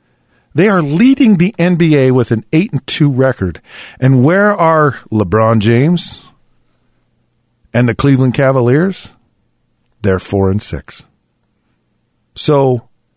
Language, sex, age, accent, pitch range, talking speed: English, male, 40-59, American, 105-145 Hz, 105 wpm